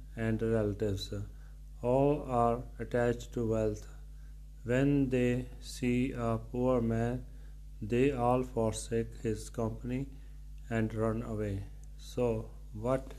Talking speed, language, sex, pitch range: 105 wpm, Punjabi, male, 75-125 Hz